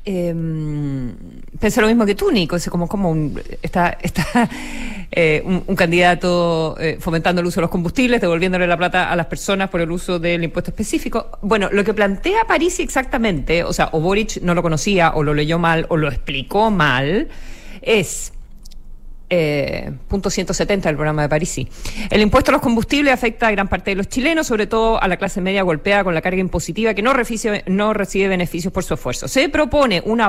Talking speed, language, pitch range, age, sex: 195 wpm, Spanish, 170-225 Hz, 40-59, female